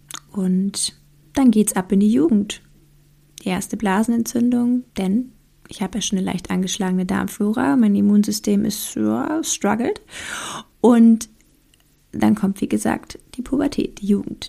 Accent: German